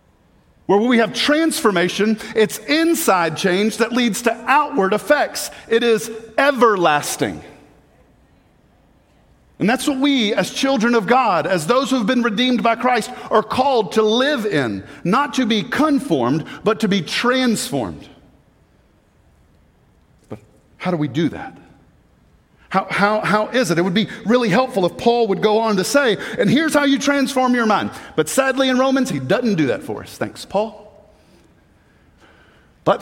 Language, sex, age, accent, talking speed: English, male, 50-69, American, 160 wpm